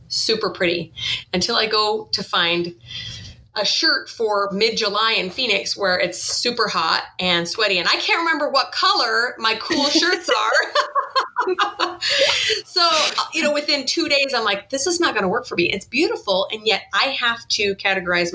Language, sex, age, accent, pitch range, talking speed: English, female, 30-49, American, 170-220 Hz, 175 wpm